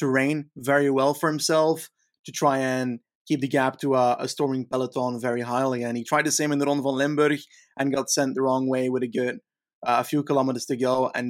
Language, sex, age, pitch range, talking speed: English, male, 20-39, 130-155 Hz, 235 wpm